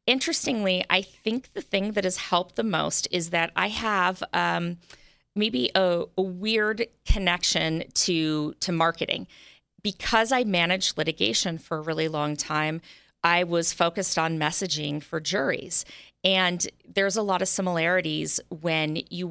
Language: English